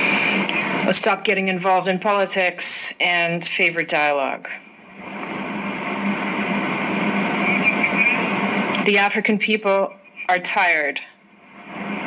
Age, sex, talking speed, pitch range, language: 40-59, female, 65 wpm, 175-200 Hz, English